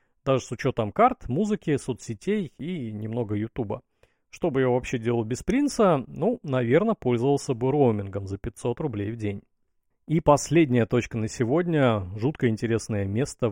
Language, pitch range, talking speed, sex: Russian, 110-160 Hz, 150 wpm, male